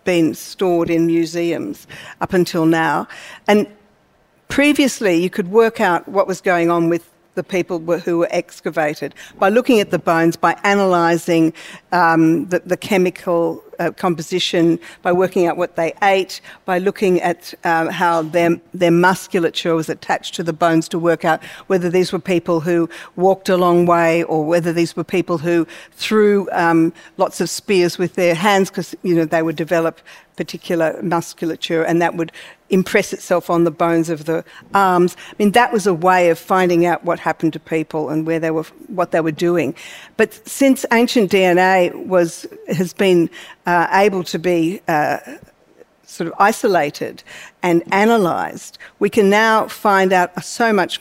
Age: 50-69